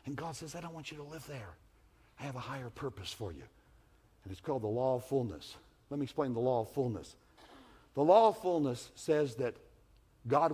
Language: English